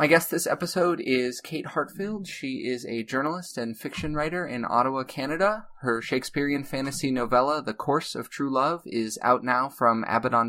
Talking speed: 175 wpm